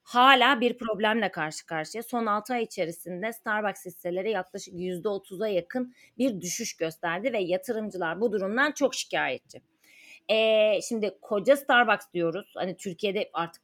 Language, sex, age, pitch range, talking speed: Turkish, female, 30-49, 185-230 Hz, 135 wpm